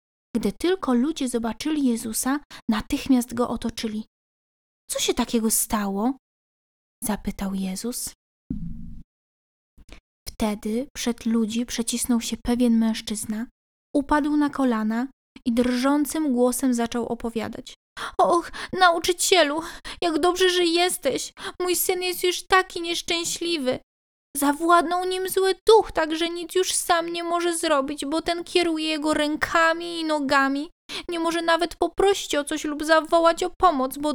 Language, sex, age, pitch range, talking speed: Polish, female, 20-39, 255-350 Hz, 125 wpm